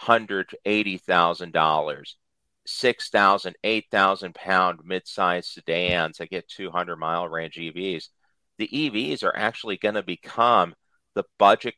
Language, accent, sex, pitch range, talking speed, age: English, American, male, 85-105 Hz, 105 wpm, 50-69